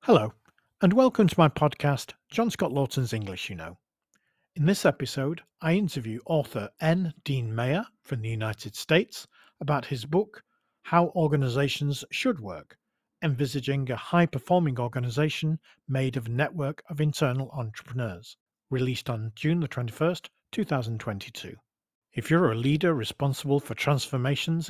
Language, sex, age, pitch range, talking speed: English, male, 40-59, 120-155 Hz, 135 wpm